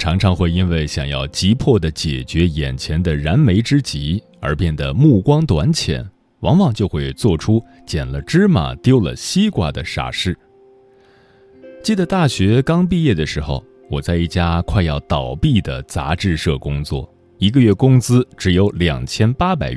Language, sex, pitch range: Chinese, male, 80-130 Hz